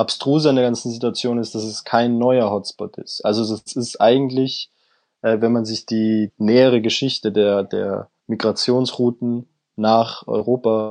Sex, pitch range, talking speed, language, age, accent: male, 110-125 Hz, 150 wpm, German, 20-39, German